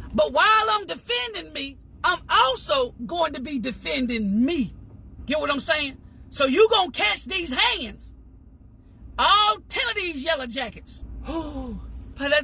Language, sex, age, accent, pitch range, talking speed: English, female, 40-59, American, 275-420 Hz, 150 wpm